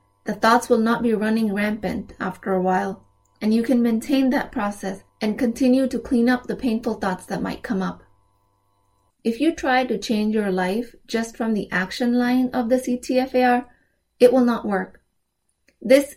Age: 20-39